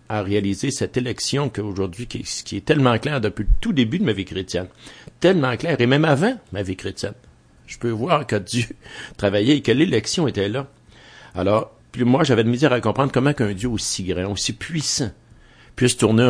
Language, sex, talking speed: English, male, 195 wpm